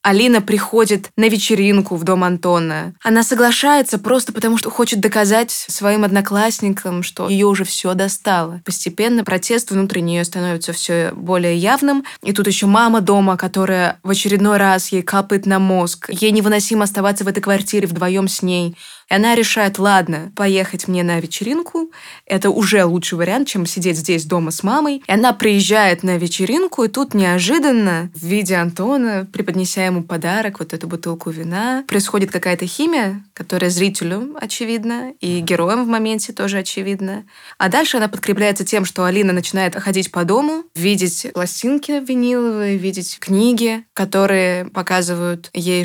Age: 20-39